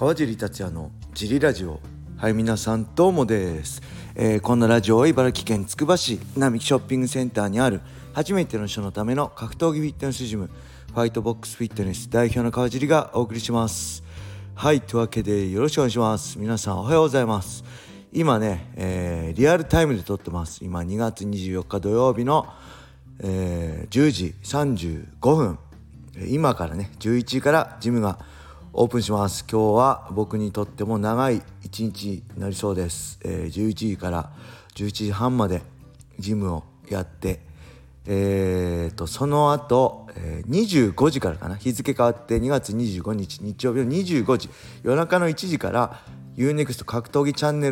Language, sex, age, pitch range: Japanese, male, 40-59, 95-130 Hz